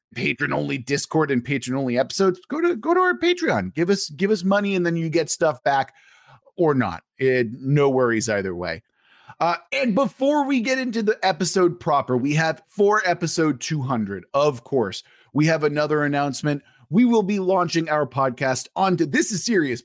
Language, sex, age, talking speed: English, male, 30-49, 185 wpm